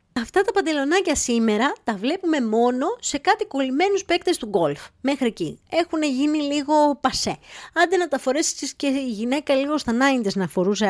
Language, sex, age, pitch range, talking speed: Greek, female, 20-39, 205-305 Hz, 165 wpm